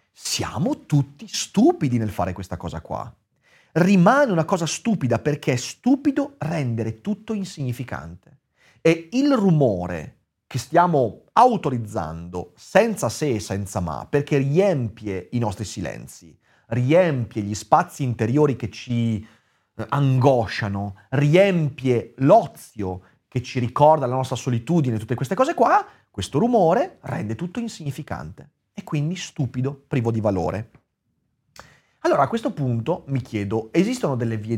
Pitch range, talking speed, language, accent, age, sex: 115-175 Hz, 125 wpm, Italian, native, 30-49, male